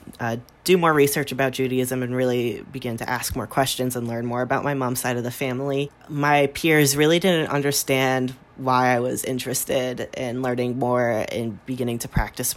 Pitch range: 130-150 Hz